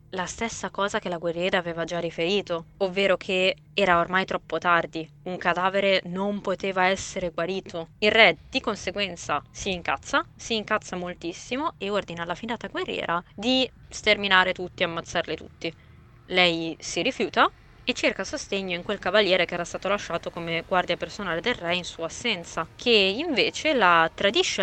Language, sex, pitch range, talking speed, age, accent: Italian, female, 170-215 Hz, 160 wpm, 20-39, native